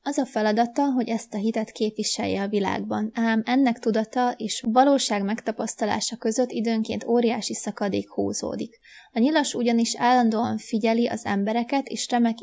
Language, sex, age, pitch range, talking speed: Hungarian, female, 20-39, 215-245 Hz, 145 wpm